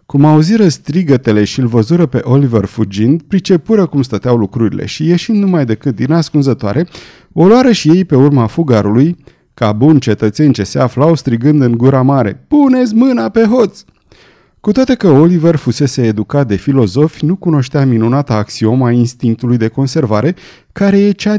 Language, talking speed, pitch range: Romanian, 165 wpm, 120-170 Hz